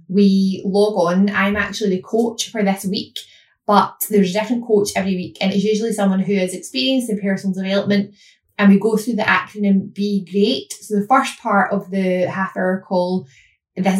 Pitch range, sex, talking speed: 185-215 Hz, female, 195 wpm